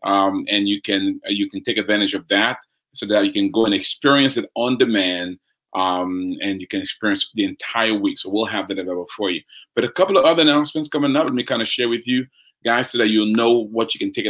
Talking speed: 250 wpm